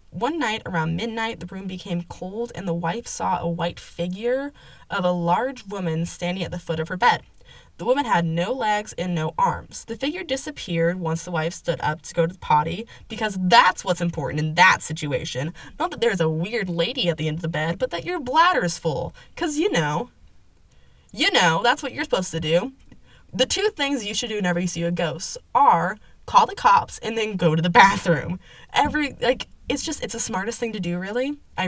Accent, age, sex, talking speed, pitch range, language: American, 20-39, female, 220 wpm, 165-240 Hz, English